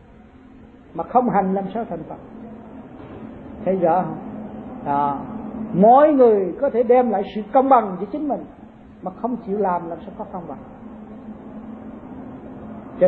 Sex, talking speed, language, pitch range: male, 145 wpm, Vietnamese, 200-250 Hz